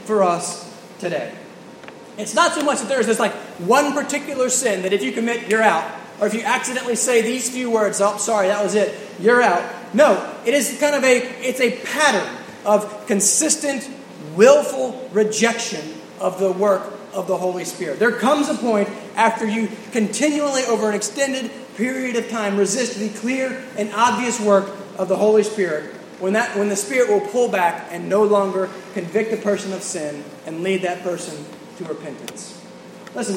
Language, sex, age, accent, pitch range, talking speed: English, male, 20-39, American, 195-250 Hz, 180 wpm